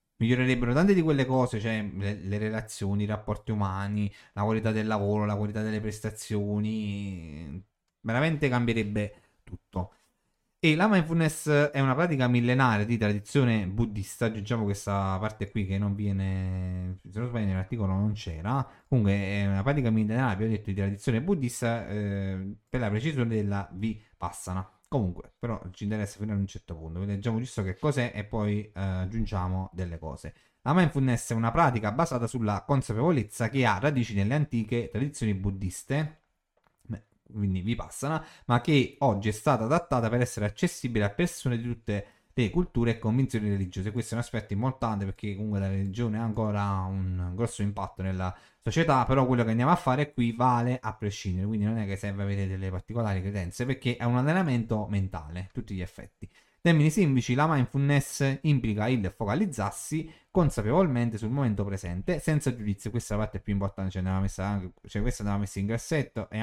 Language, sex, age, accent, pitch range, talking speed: Italian, male, 30-49, native, 100-125 Hz, 170 wpm